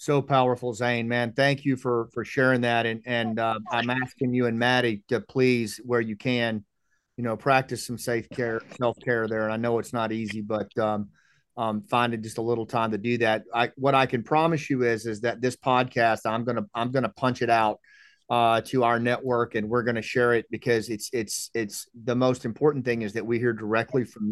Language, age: English, 40-59